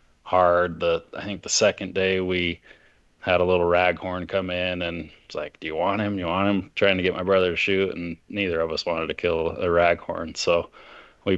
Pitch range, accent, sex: 85-95 Hz, American, male